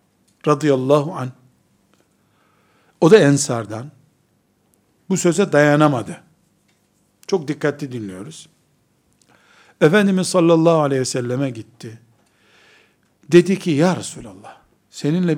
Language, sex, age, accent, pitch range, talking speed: Turkish, male, 60-79, native, 135-175 Hz, 85 wpm